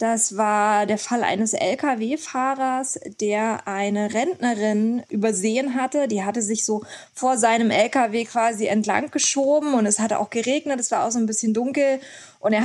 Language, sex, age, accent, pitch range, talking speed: German, female, 20-39, German, 210-250 Hz, 165 wpm